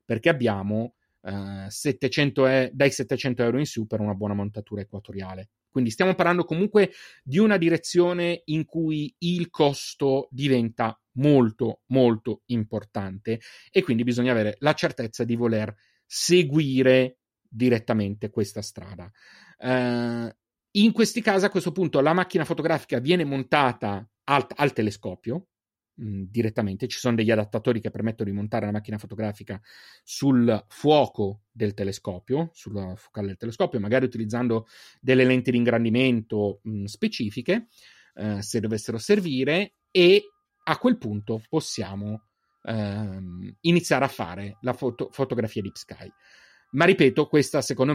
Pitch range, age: 110-145 Hz, 30-49